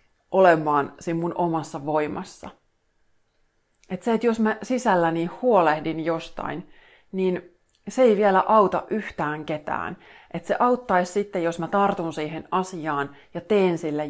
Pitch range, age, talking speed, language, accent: 155-185 Hz, 30-49, 130 wpm, Finnish, native